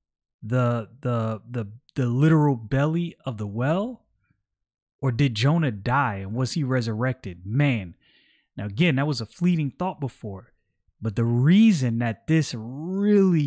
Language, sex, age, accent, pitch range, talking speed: English, male, 30-49, American, 120-170 Hz, 145 wpm